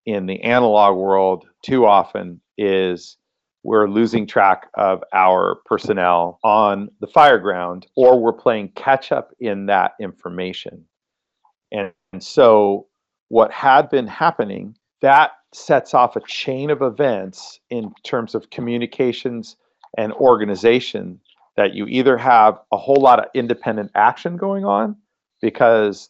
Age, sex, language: 40-59, male, English